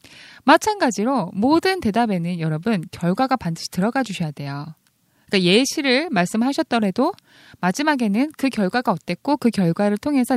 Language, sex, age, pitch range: Korean, female, 20-39, 180-270 Hz